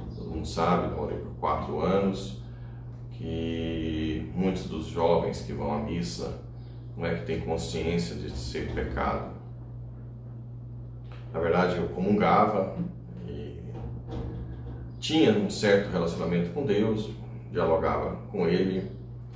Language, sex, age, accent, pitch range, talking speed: Portuguese, male, 40-59, Brazilian, 80-120 Hz, 110 wpm